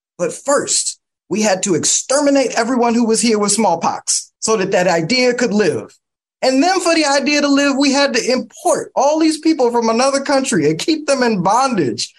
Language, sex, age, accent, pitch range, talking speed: English, male, 30-49, American, 160-245 Hz, 195 wpm